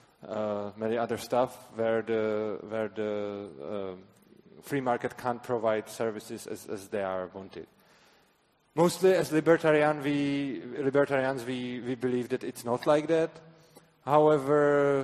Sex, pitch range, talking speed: male, 115-155 Hz, 135 wpm